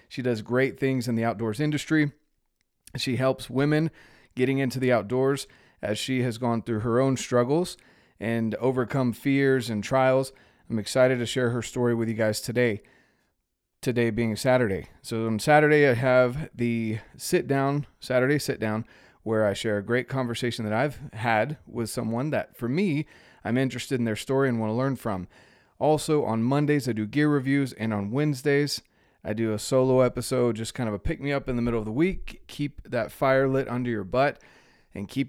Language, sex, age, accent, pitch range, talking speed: English, male, 30-49, American, 115-135 Hz, 190 wpm